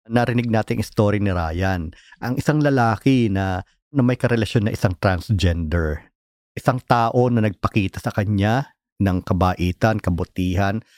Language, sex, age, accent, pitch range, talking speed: Filipino, male, 50-69, native, 95-125 Hz, 130 wpm